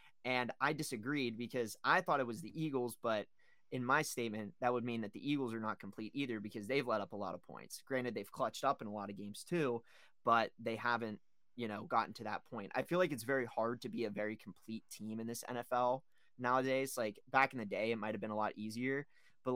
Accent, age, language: American, 20-39, English